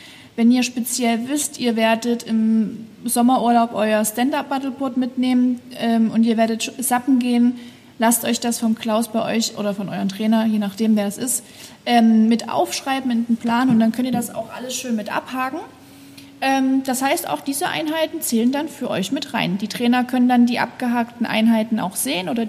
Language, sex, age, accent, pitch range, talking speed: German, female, 30-49, German, 225-270 Hz, 190 wpm